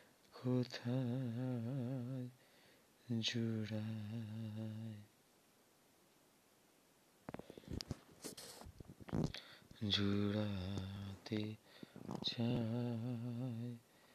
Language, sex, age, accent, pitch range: Bengali, male, 30-49, native, 115-160 Hz